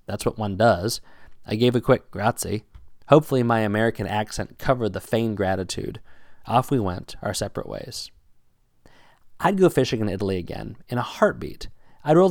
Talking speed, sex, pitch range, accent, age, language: 165 wpm, male, 105-135 Hz, American, 30-49, English